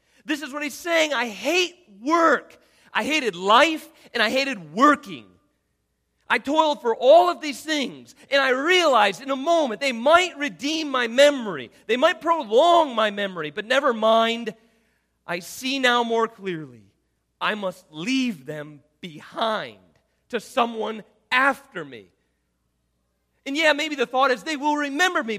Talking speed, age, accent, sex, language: 155 wpm, 40-59, American, male, English